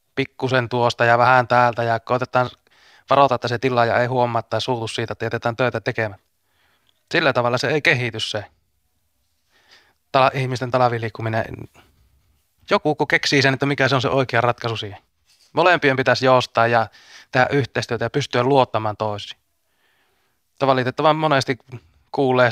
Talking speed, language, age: 145 wpm, Finnish, 20-39